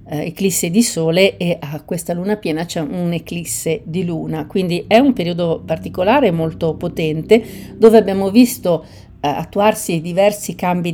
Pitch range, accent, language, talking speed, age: 160-220 Hz, native, Italian, 145 wpm, 50-69